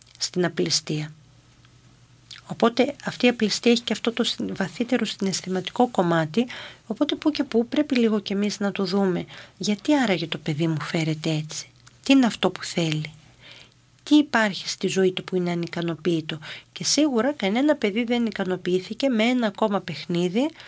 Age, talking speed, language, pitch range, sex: 40-59, 160 wpm, Greek, 170-220 Hz, female